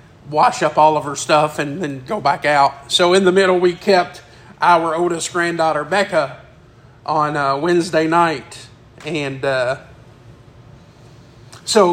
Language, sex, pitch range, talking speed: English, male, 145-190 Hz, 140 wpm